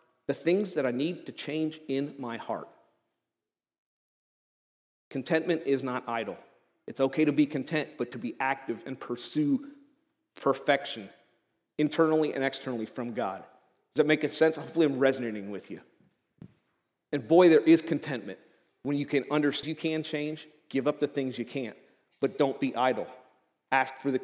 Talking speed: 160 wpm